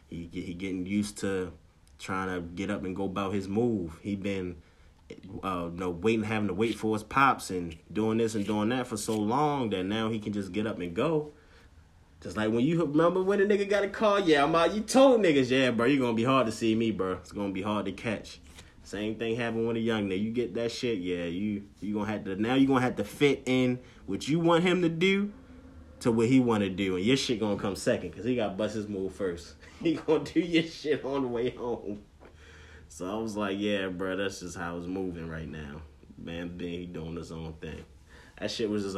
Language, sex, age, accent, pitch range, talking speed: English, male, 30-49, American, 90-115 Hz, 245 wpm